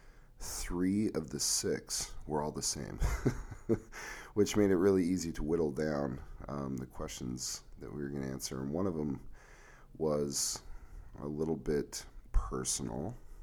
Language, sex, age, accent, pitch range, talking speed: English, male, 40-59, American, 70-90 Hz, 150 wpm